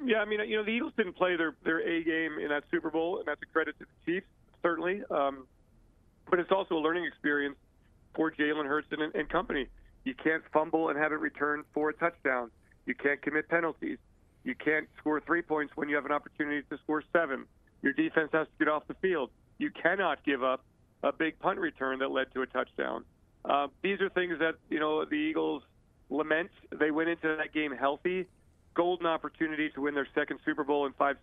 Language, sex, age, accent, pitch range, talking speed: English, male, 40-59, American, 140-165 Hz, 215 wpm